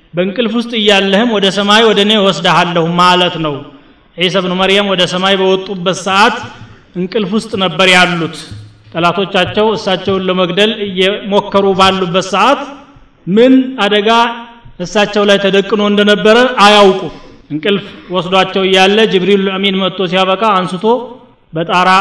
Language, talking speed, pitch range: Amharic, 115 wpm, 175-205 Hz